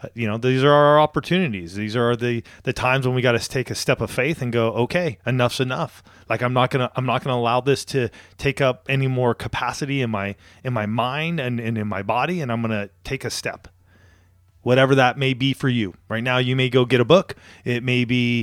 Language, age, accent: English, 30-49, American